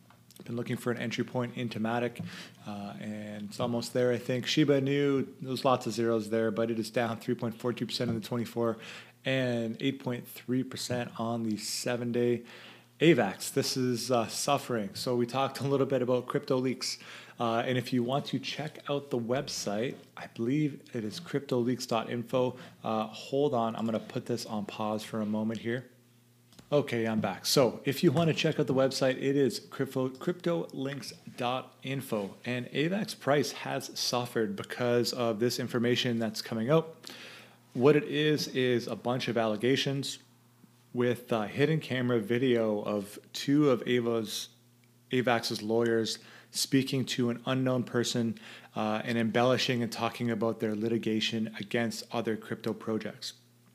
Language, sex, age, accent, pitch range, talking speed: English, male, 30-49, American, 115-130 Hz, 160 wpm